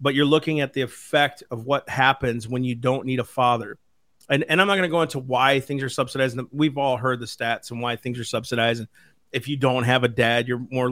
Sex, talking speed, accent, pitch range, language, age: male, 255 wpm, American, 125-160 Hz, English, 40-59